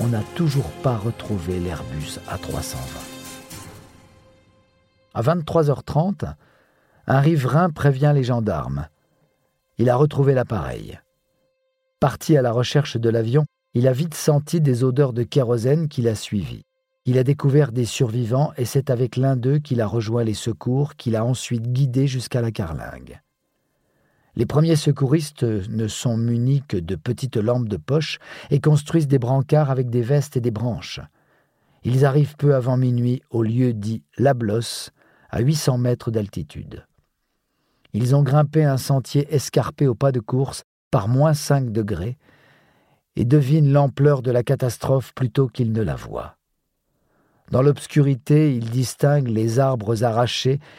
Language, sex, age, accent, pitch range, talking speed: French, male, 50-69, French, 120-145 Hz, 145 wpm